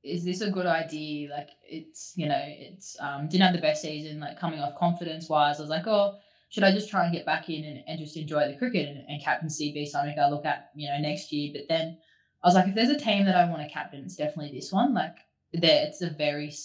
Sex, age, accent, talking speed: female, 20-39, Australian, 265 wpm